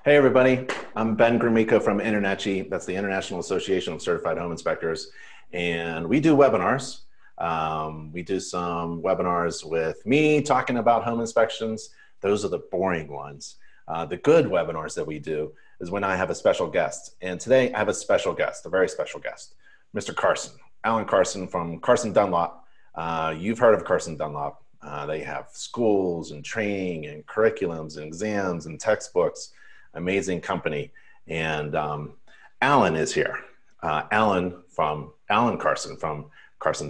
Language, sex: English, male